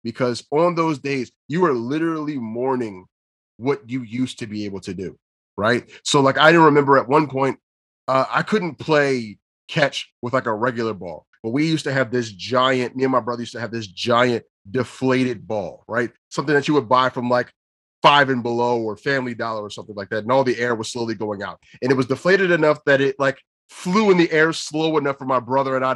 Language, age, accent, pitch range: English, 30-49, American, 110-140 Hz